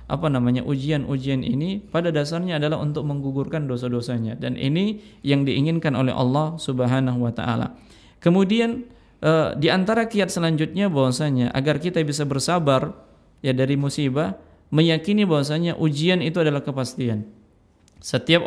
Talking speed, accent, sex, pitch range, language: 125 wpm, native, male, 130-170 Hz, Indonesian